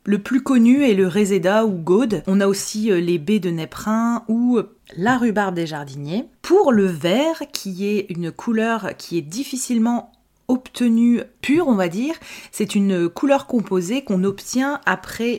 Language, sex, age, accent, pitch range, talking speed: French, female, 30-49, French, 185-235 Hz, 165 wpm